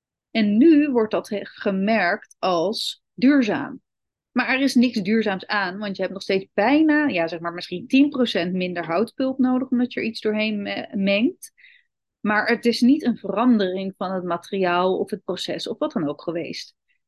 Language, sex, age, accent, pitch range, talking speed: Dutch, female, 30-49, Dutch, 185-250 Hz, 175 wpm